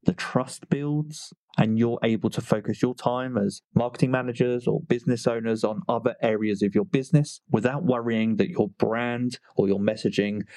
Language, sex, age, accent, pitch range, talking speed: English, male, 20-39, British, 105-125 Hz, 170 wpm